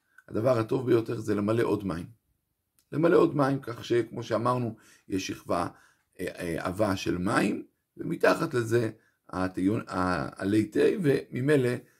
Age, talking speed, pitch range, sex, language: 50-69, 115 wpm, 105-140 Hz, male, Hebrew